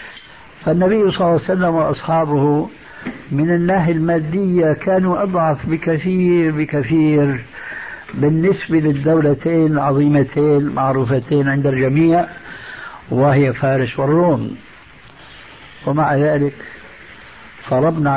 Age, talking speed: 60-79, 85 wpm